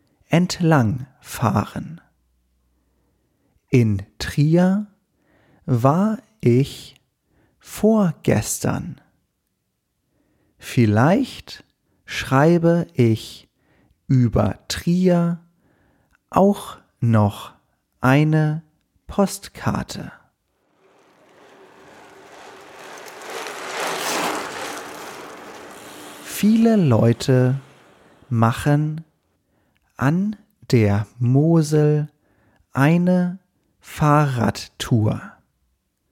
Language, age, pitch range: English, 40-59, 115-180 Hz